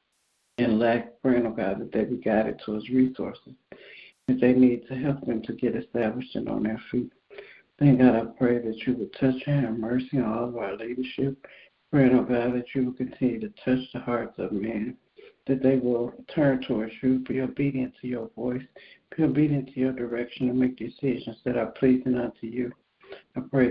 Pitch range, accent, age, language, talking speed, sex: 120-130 Hz, American, 60-79, English, 200 wpm, male